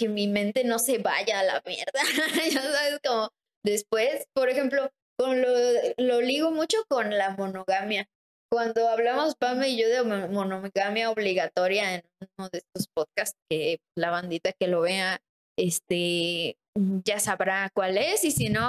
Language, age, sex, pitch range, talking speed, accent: Spanish, 20-39, female, 205-275 Hz, 160 wpm, Mexican